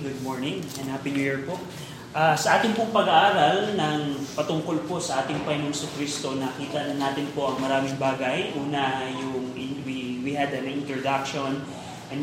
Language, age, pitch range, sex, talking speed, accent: Filipino, 20-39, 140-170 Hz, male, 170 wpm, native